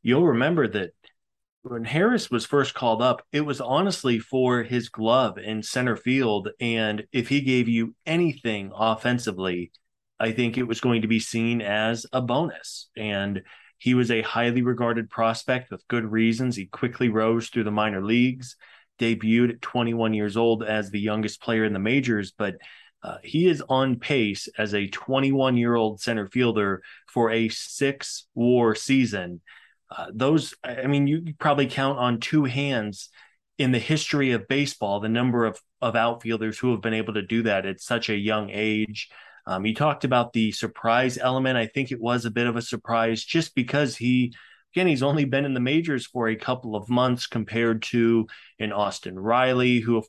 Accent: American